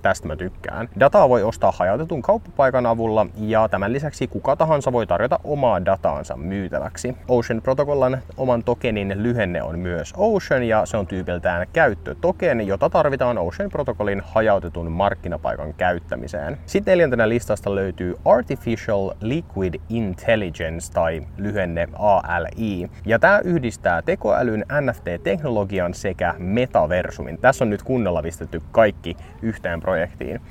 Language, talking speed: Finnish, 125 wpm